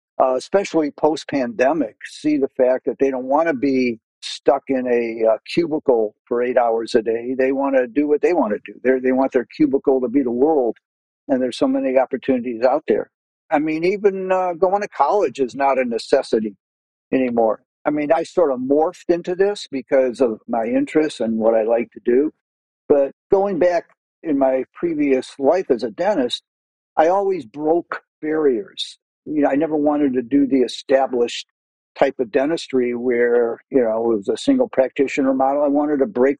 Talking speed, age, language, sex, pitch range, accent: 190 wpm, 50-69, English, male, 130-155 Hz, American